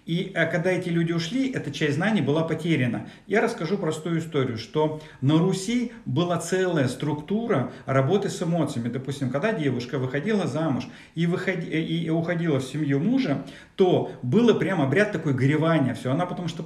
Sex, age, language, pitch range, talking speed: male, 40-59, Russian, 145-180 Hz, 160 wpm